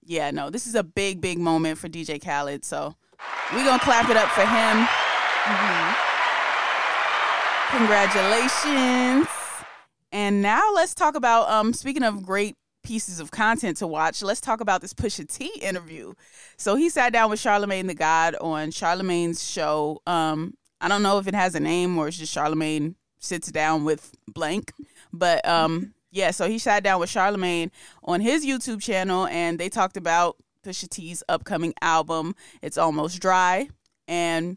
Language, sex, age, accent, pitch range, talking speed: English, female, 20-39, American, 165-205 Hz, 165 wpm